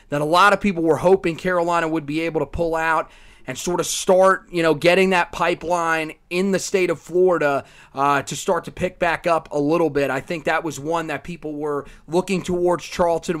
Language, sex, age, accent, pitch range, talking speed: English, male, 30-49, American, 150-180 Hz, 220 wpm